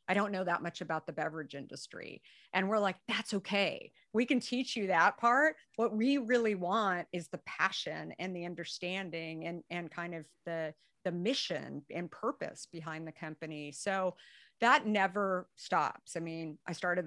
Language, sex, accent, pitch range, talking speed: English, female, American, 165-200 Hz, 175 wpm